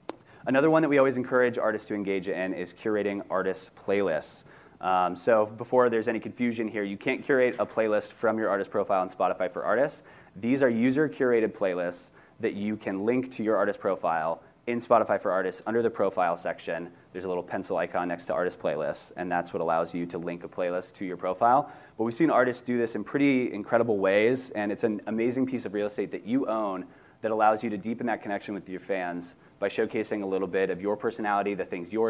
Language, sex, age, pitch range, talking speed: English, male, 30-49, 95-115 Hz, 220 wpm